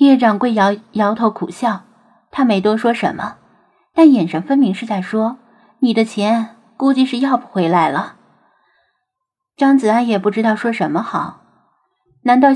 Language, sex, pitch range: Chinese, female, 205-270 Hz